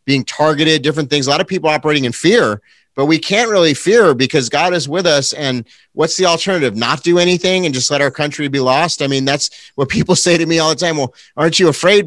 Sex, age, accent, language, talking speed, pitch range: male, 30-49, American, English, 250 wpm, 140-175 Hz